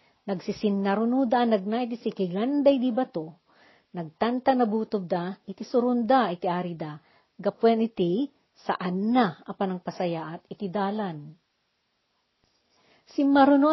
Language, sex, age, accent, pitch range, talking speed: Filipino, female, 50-69, native, 180-235 Hz, 110 wpm